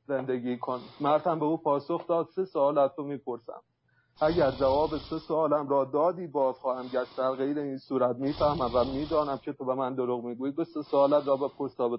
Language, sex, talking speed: English, male, 195 wpm